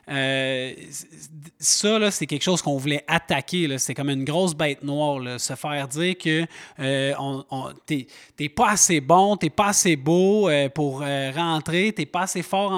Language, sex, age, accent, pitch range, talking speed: French, male, 30-49, Canadian, 150-205 Hz, 200 wpm